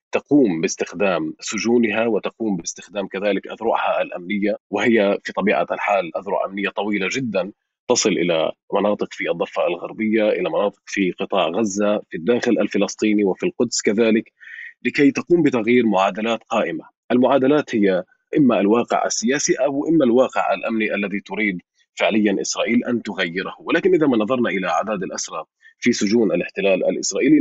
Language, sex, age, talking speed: Arabic, male, 30-49, 140 wpm